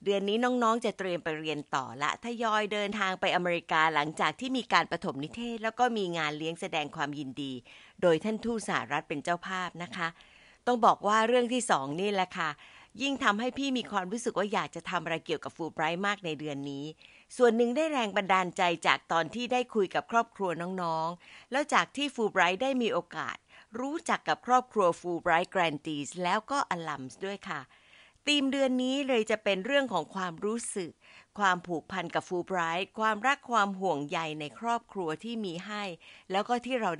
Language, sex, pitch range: Thai, female, 165-230 Hz